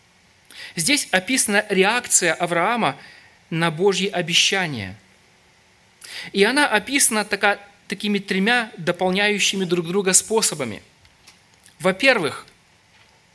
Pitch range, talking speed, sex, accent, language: 180-215 Hz, 80 wpm, male, native, Russian